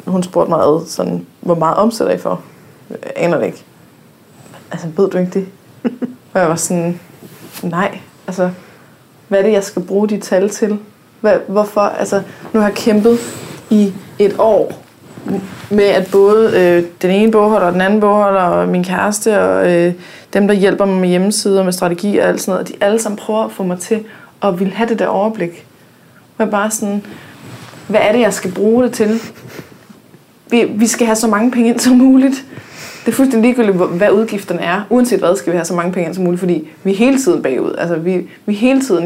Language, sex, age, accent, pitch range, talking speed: Danish, female, 20-39, native, 180-220 Hz, 205 wpm